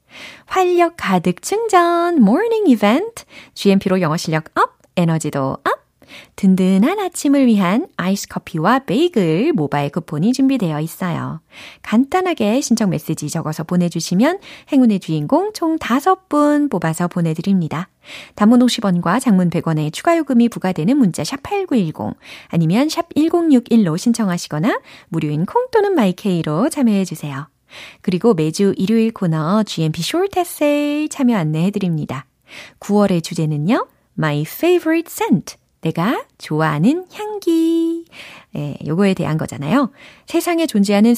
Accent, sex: native, female